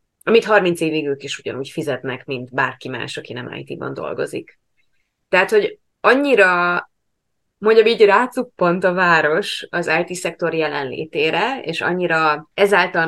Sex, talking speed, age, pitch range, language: female, 130 wpm, 20-39, 155-205 Hz, Hungarian